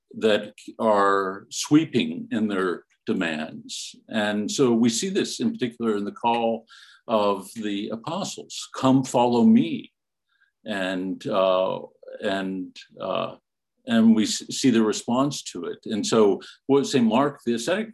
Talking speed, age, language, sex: 135 wpm, 50-69, English, male